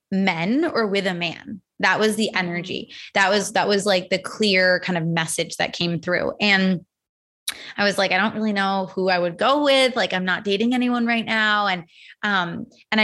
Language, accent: English, American